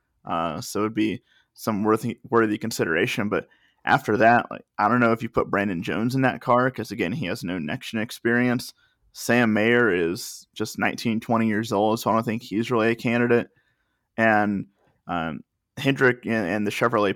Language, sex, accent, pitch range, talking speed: English, male, American, 105-120 Hz, 190 wpm